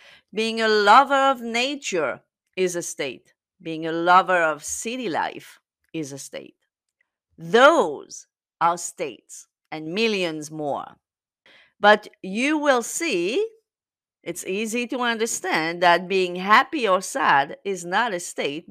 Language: English